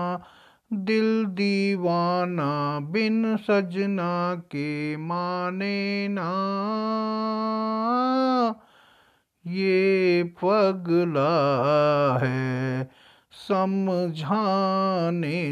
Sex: male